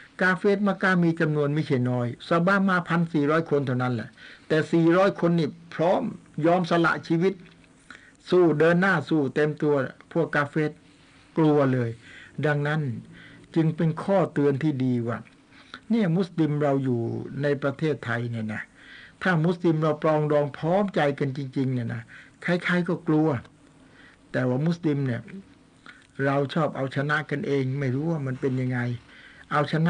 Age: 60-79